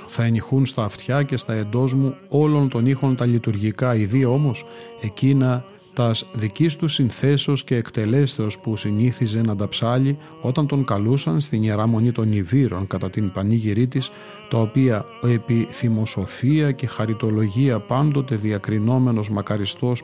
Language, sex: Greek, male